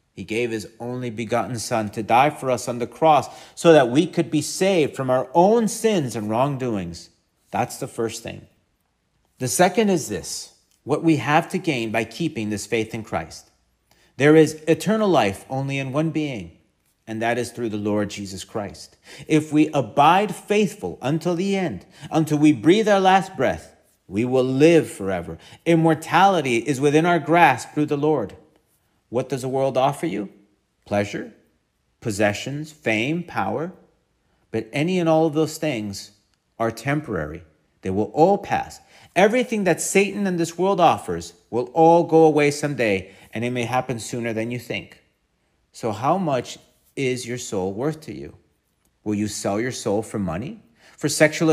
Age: 40-59